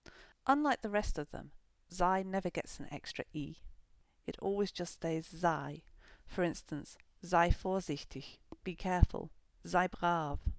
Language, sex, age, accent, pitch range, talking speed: English, female, 40-59, British, 170-230 Hz, 135 wpm